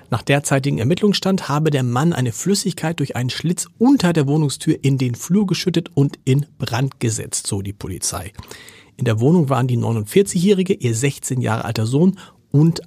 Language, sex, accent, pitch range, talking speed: German, male, German, 115-160 Hz, 175 wpm